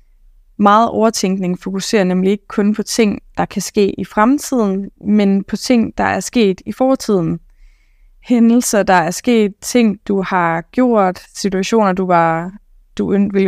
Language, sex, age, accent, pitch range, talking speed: Danish, female, 20-39, native, 185-225 Hz, 150 wpm